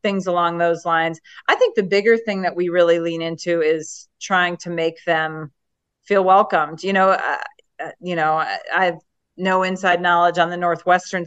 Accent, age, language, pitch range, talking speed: American, 40-59, English, 170-215 Hz, 180 wpm